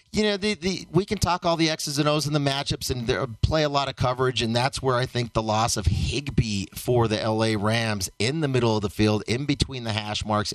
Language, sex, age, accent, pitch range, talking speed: English, male, 40-59, American, 105-135 Hz, 255 wpm